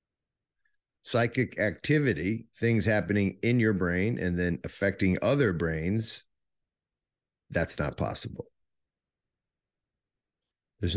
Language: English